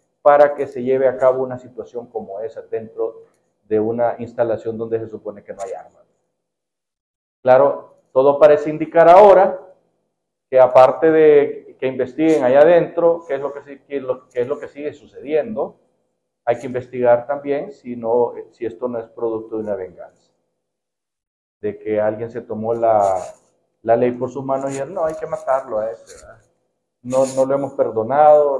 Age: 50-69